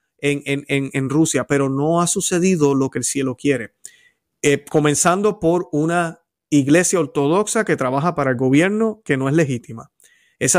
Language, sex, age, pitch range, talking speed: Spanish, male, 30-49, 140-175 Hz, 165 wpm